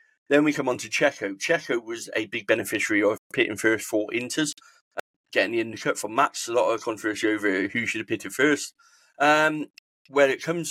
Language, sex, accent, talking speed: English, male, British, 205 wpm